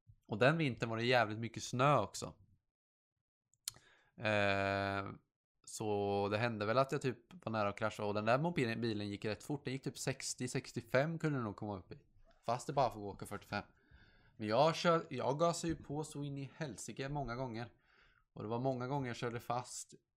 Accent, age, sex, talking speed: Norwegian, 20-39, male, 195 wpm